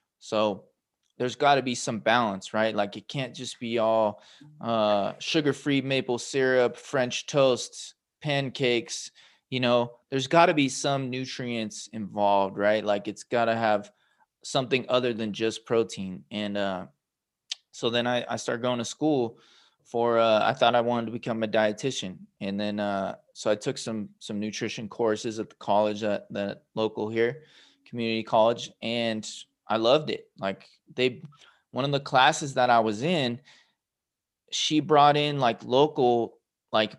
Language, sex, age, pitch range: English, male, 20-39, 110-130 Hz